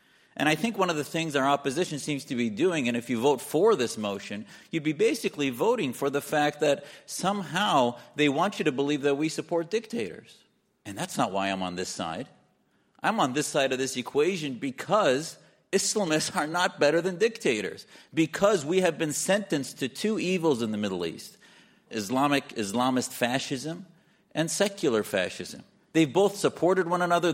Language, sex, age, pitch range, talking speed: English, male, 40-59, 120-180 Hz, 185 wpm